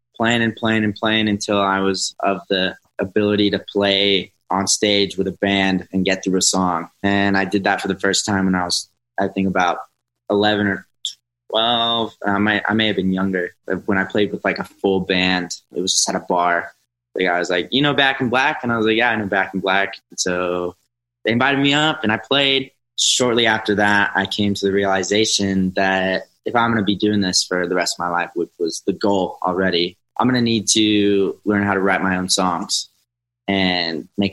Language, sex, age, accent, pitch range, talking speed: English, male, 20-39, American, 95-110 Hz, 230 wpm